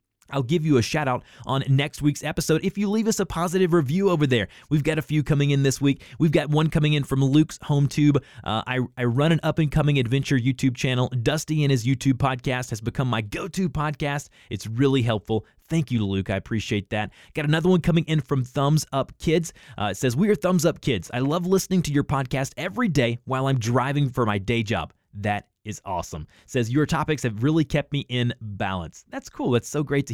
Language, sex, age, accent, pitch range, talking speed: English, male, 20-39, American, 120-155 Hz, 235 wpm